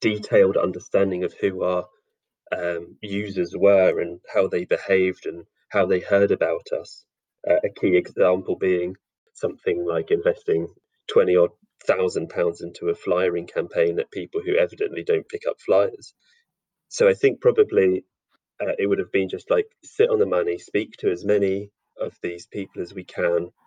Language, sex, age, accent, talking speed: English, male, 30-49, British, 165 wpm